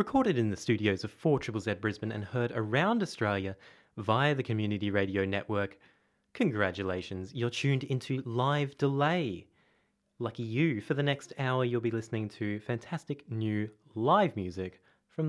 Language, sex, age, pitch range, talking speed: English, male, 20-39, 100-135 Hz, 145 wpm